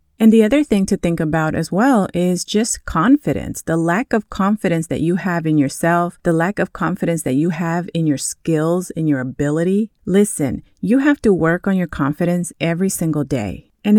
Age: 30-49